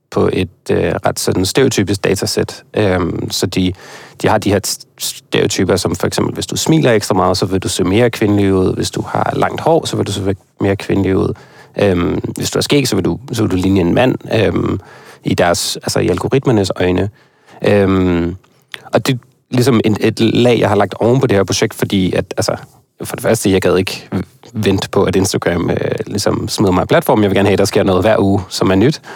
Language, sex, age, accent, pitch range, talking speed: Danish, male, 30-49, native, 95-115 Hz, 230 wpm